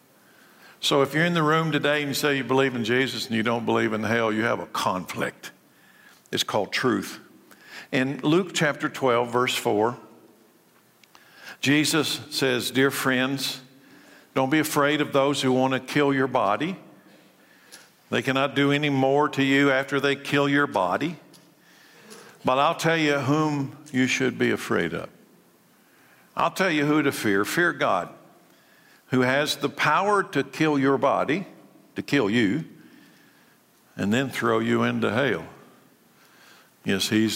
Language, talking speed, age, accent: English, 155 wpm, 60-79, American